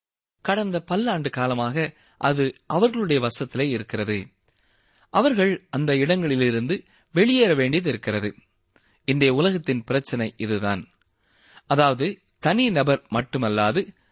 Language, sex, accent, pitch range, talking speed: Tamil, male, native, 110-175 Hz, 85 wpm